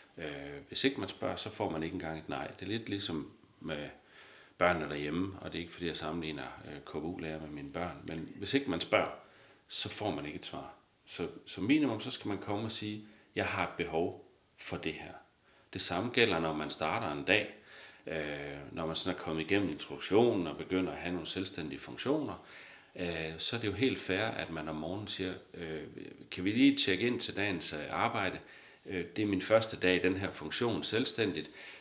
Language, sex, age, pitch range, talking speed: Danish, male, 40-59, 80-105 Hz, 205 wpm